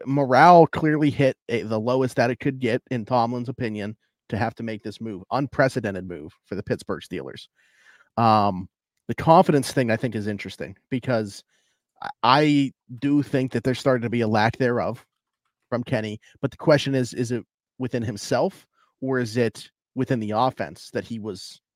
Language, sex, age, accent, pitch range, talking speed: English, male, 30-49, American, 110-130 Hz, 180 wpm